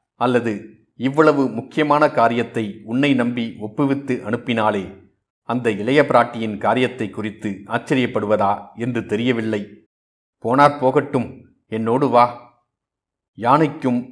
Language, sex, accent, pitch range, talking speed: Tamil, male, native, 105-130 Hz, 85 wpm